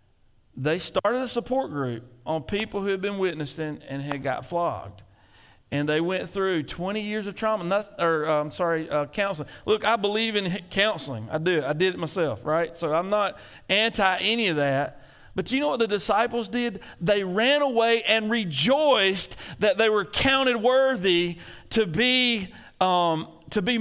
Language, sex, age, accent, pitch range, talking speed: English, male, 40-59, American, 130-200 Hz, 175 wpm